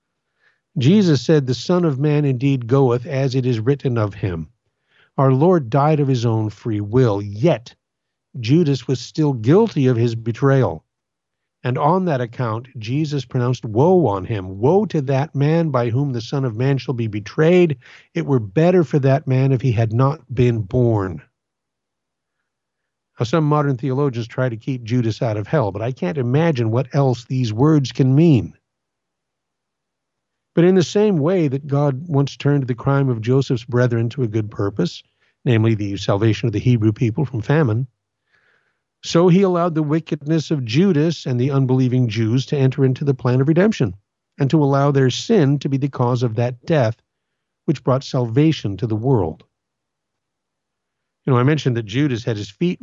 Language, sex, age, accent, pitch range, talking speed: English, male, 50-69, American, 120-150 Hz, 180 wpm